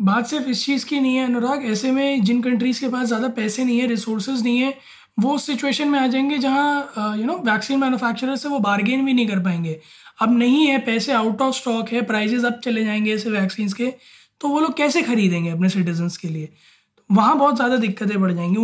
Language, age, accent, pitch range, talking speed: Hindi, 20-39, native, 210-255 Hz, 220 wpm